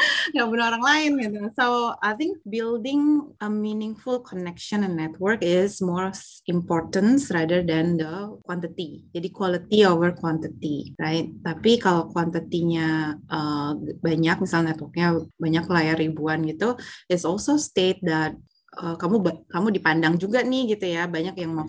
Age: 20-39